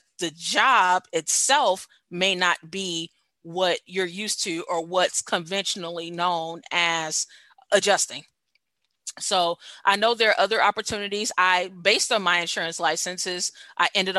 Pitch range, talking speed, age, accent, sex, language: 170-195 Hz, 130 wpm, 30-49, American, female, English